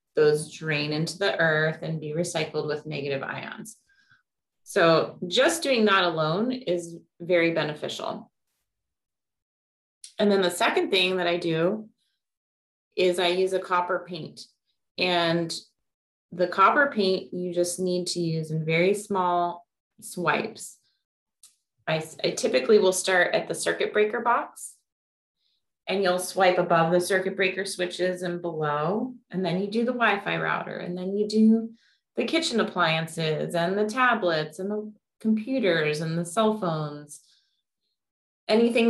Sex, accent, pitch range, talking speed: female, American, 155-205 Hz, 140 wpm